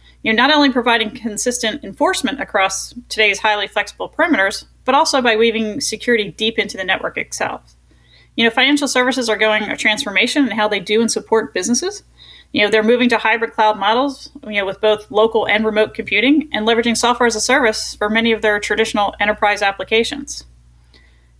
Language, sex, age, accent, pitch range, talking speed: English, female, 30-49, American, 205-245 Hz, 185 wpm